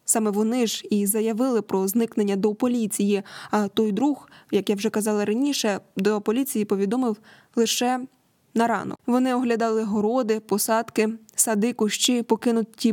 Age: 20-39